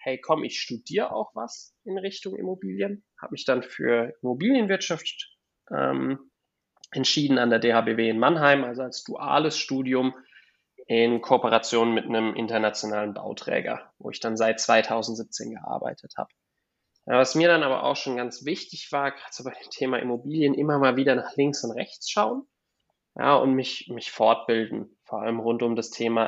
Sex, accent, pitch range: male, German, 115-135 Hz